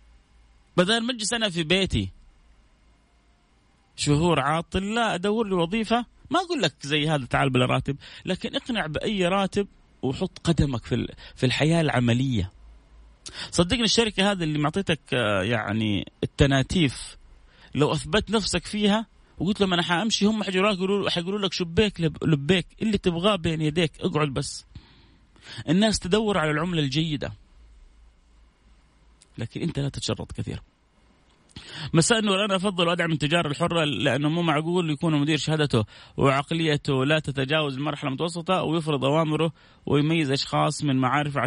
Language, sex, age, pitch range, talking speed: Arabic, male, 30-49, 130-175 Hz, 135 wpm